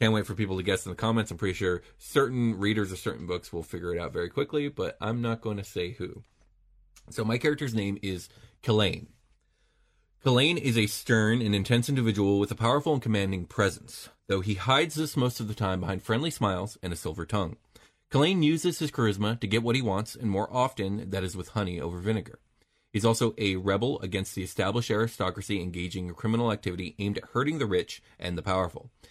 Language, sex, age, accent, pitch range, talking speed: English, male, 30-49, American, 95-115 Hz, 210 wpm